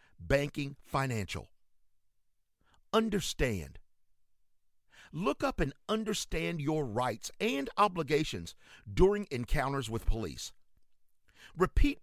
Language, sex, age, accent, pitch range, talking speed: English, male, 50-69, American, 130-195 Hz, 80 wpm